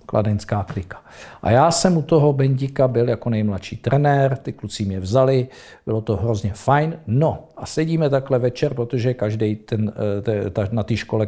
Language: Czech